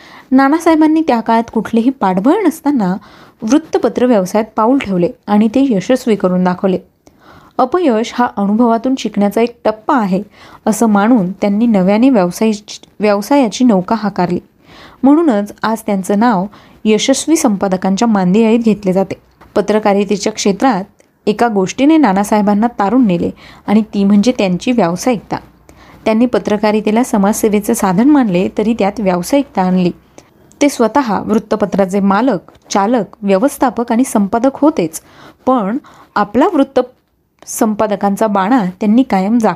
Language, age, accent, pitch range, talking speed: Marathi, 20-39, native, 200-255 Hz, 110 wpm